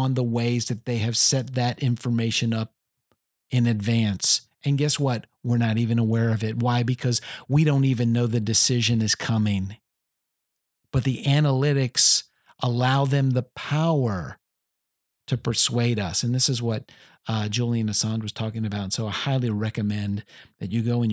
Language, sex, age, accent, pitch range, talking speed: English, male, 40-59, American, 110-135 Hz, 170 wpm